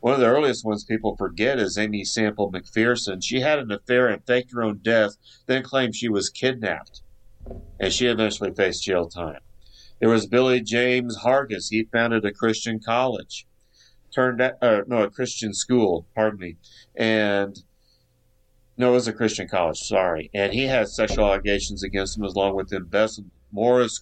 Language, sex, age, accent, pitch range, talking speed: English, male, 50-69, American, 100-125 Hz, 175 wpm